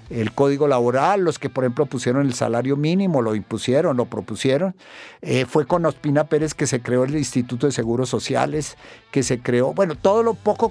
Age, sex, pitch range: 50-69, male, 120-165 Hz